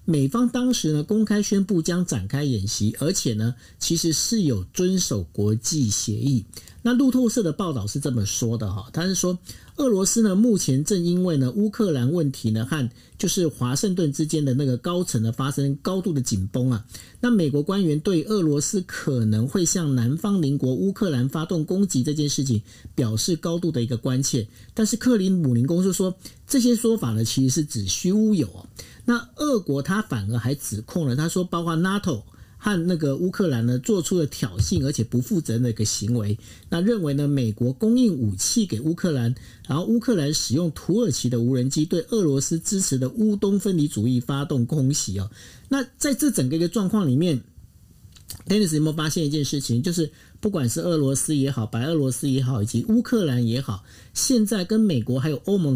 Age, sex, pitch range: 50-69, male, 120-185 Hz